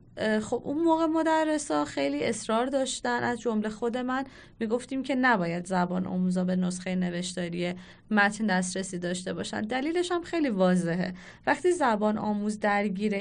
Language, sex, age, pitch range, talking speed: Persian, female, 20-39, 195-275 Hz, 145 wpm